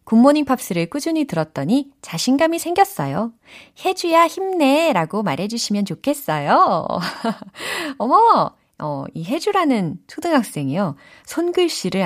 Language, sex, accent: Korean, female, native